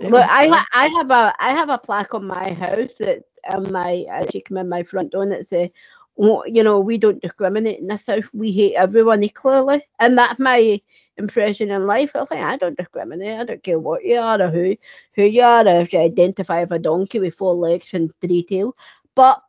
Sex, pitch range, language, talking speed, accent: female, 195-245 Hz, English, 220 wpm, British